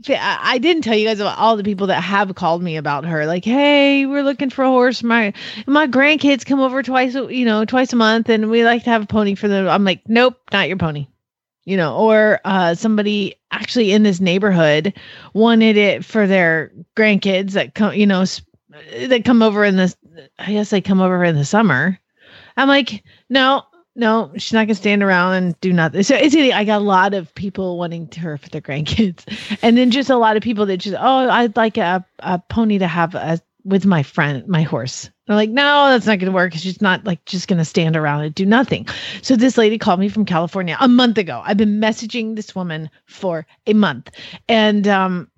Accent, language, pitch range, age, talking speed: American, English, 185-235 Hz, 30-49, 220 wpm